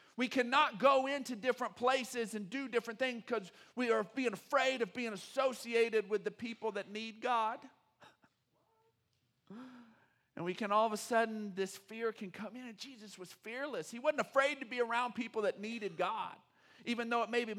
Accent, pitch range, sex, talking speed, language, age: American, 170-245 Hz, male, 185 wpm, English, 50-69